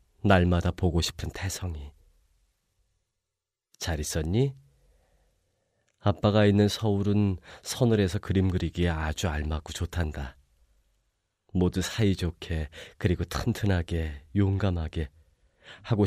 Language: Korean